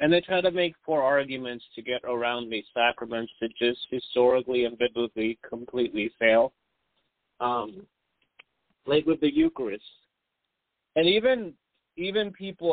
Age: 40-59